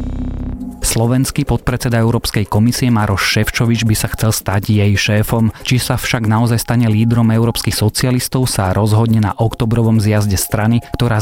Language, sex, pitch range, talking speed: Slovak, male, 105-120 Hz, 145 wpm